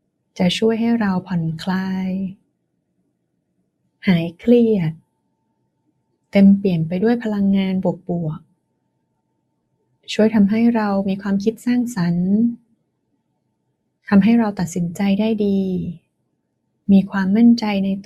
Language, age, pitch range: Thai, 20-39, 180-215 Hz